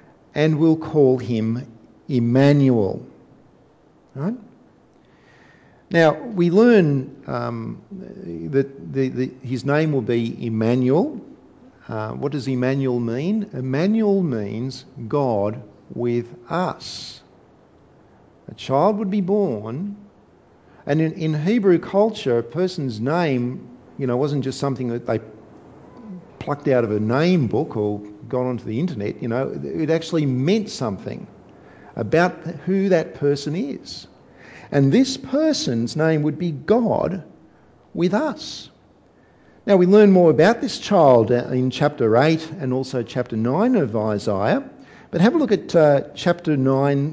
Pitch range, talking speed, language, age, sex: 125-180 Hz, 130 wpm, English, 50-69, male